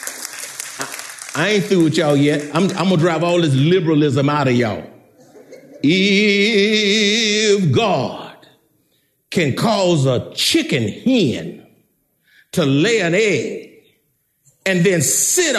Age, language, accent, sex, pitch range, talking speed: 50-69, English, American, male, 145-225 Hz, 115 wpm